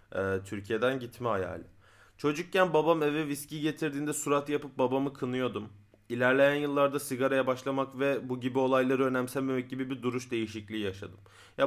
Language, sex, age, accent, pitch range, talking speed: Turkish, male, 30-49, native, 110-140 Hz, 140 wpm